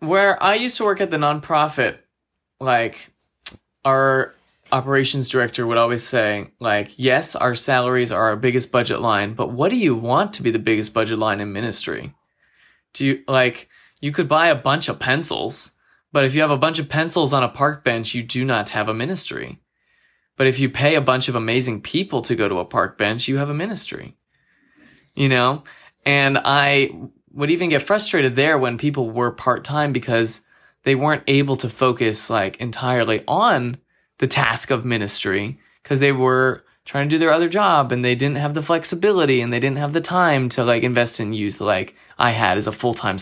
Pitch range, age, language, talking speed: 120-155 Hz, 20-39, English, 195 wpm